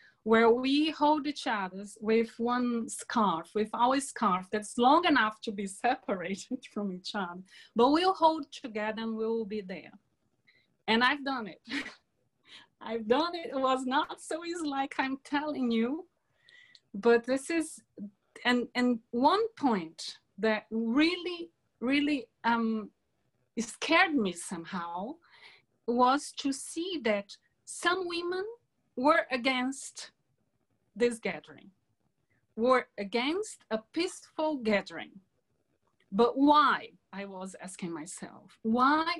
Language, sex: English, female